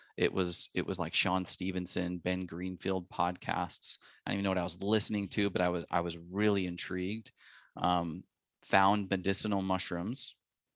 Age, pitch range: 20-39, 90-105 Hz